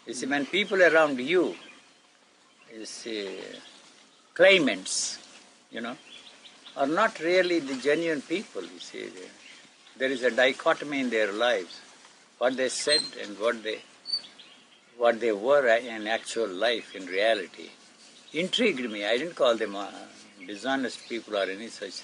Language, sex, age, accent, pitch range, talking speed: English, male, 60-79, Indian, 125-165 Hz, 135 wpm